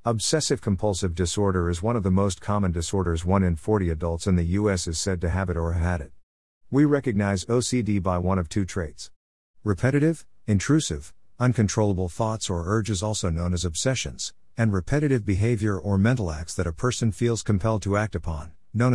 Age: 50-69